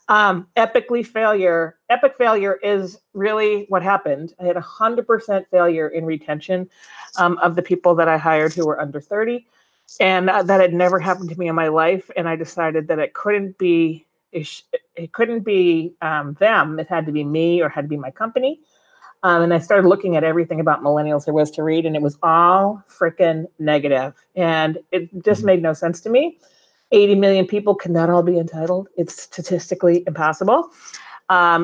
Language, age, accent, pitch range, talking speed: English, 40-59, American, 170-215 Hz, 190 wpm